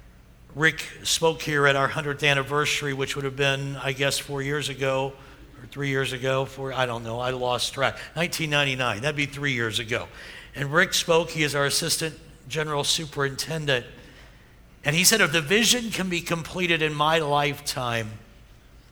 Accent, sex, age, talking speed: American, male, 60-79, 170 wpm